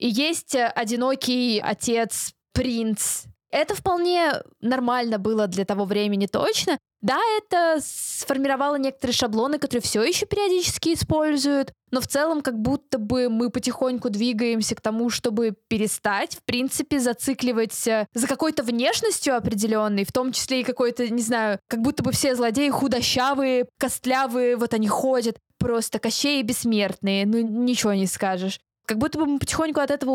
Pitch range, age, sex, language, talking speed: 220-270 Hz, 20-39, female, Russian, 145 wpm